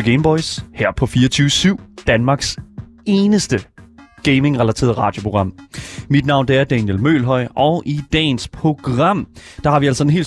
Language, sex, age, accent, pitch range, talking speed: Danish, male, 30-49, native, 130-170 Hz, 140 wpm